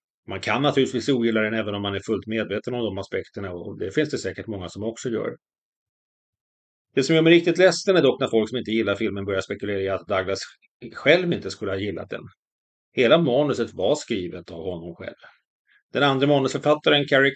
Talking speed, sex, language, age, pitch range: 205 wpm, male, Swedish, 30-49, 100-125 Hz